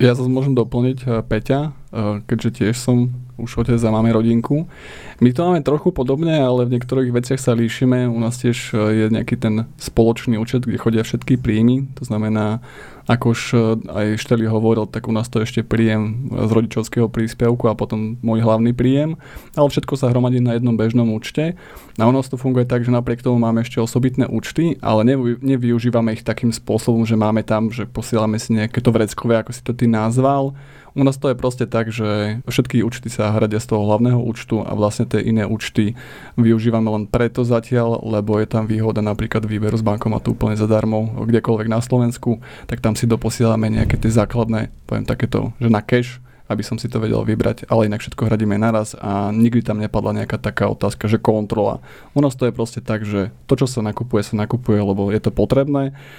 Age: 20-39